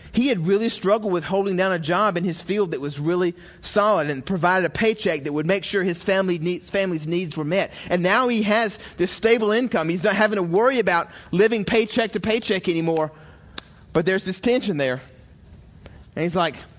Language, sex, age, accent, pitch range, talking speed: English, male, 30-49, American, 150-200 Hz, 195 wpm